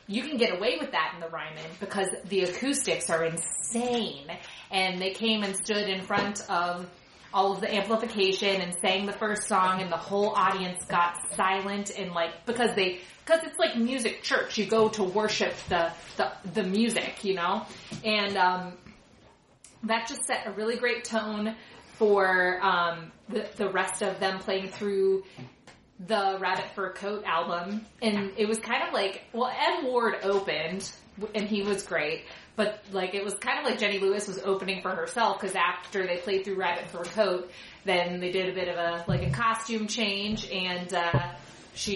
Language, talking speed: English, 185 wpm